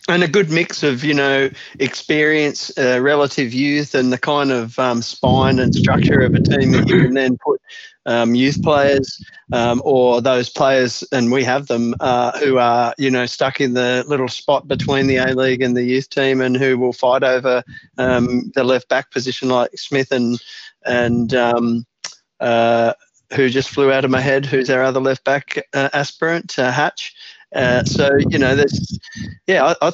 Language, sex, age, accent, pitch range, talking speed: English, male, 30-49, Australian, 130-145 Hz, 185 wpm